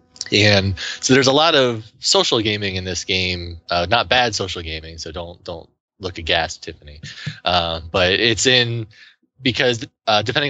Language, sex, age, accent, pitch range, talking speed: English, male, 30-49, American, 85-110 Hz, 165 wpm